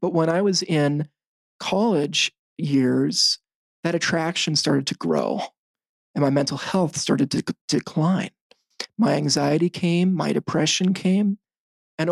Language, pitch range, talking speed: English, 140-170 Hz, 135 wpm